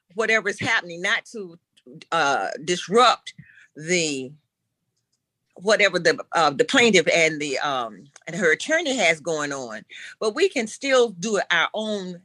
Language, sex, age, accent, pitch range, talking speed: English, female, 40-59, American, 165-225 Hz, 140 wpm